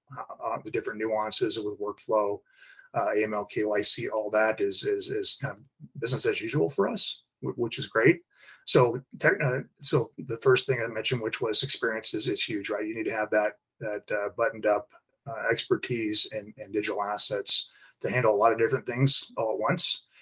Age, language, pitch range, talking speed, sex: 30-49, English, 105-135 Hz, 190 wpm, male